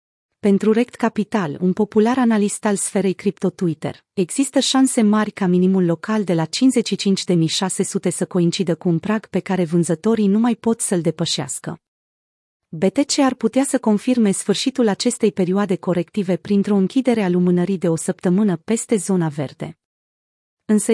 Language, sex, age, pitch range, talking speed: Romanian, female, 30-49, 180-225 Hz, 150 wpm